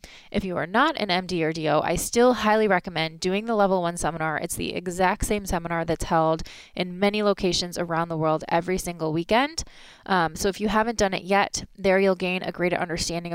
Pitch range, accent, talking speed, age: 175-225 Hz, American, 210 wpm, 20-39